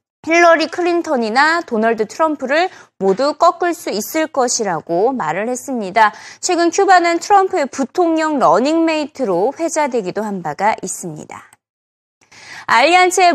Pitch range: 230-350 Hz